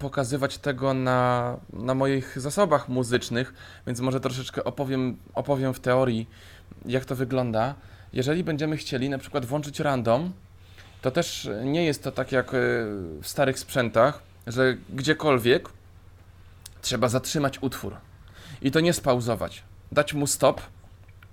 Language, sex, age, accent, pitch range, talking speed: Polish, male, 20-39, native, 105-135 Hz, 130 wpm